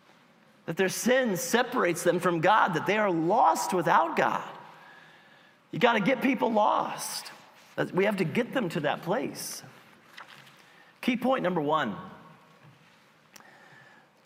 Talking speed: 130 wpm